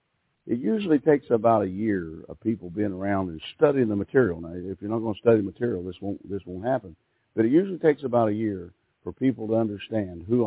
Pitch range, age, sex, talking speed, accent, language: 105-155 Hz, 50-69, male, 230 wpm, American, English